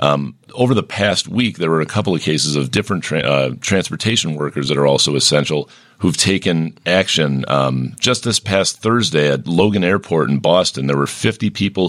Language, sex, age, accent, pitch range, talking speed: English, male, 40-59, American, 75-95 Hz, 190 wpm